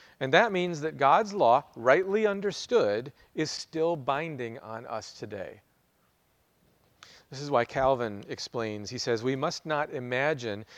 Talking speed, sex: 140 wpm, male